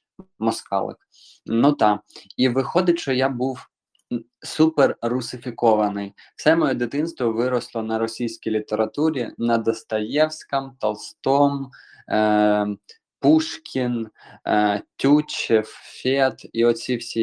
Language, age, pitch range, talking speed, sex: Ukrainian, 20-39, 110-125 Hz, 85 wpm, male